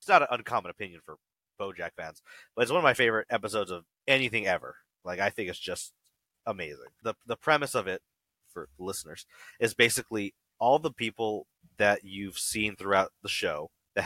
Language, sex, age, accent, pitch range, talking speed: English, male, 30-49, American, 95-115 Hz, 185 wpm